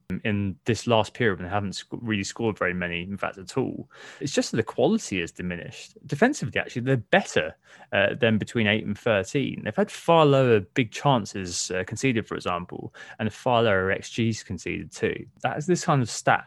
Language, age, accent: English, 20-39, British